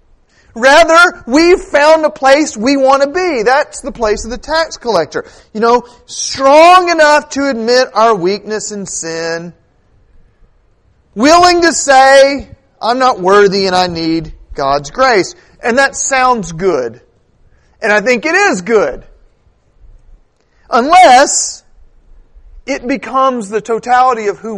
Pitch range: 200-300 Hz